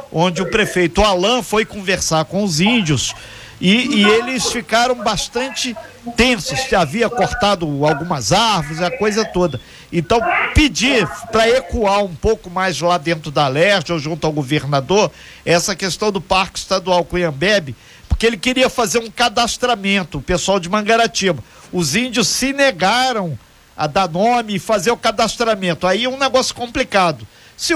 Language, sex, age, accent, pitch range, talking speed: Portuguese, male, 50-69, Brazilian, 180-230 Hz, 155 wpm